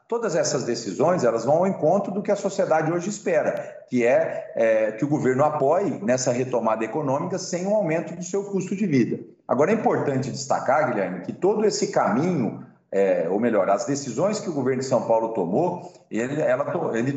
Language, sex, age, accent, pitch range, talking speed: Portuguese, male, 40-59, Brazilian, 120-180 Hz, 180 wpm